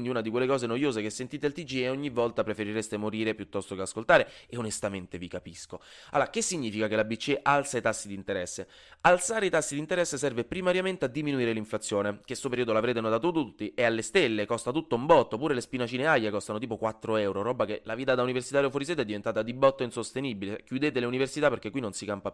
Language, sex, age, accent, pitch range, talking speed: Italian, male, 20-39, native, 110-150 Hz, 230 wpm